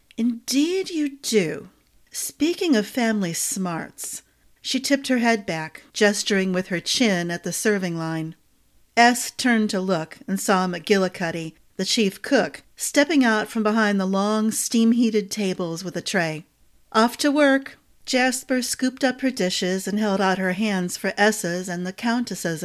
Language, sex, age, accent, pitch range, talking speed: English, female, 40-59, American, 180-235 Hz, 155 wpm